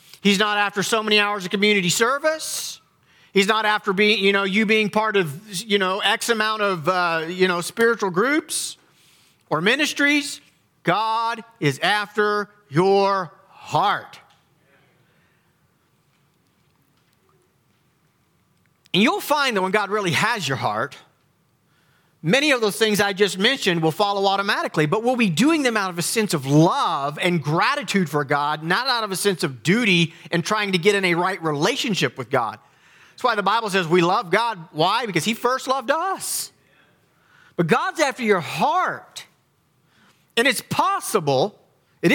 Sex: male